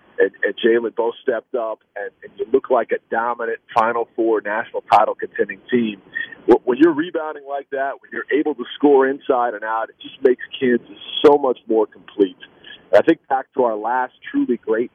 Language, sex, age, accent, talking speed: English, male, 40-59, American, 195 wpm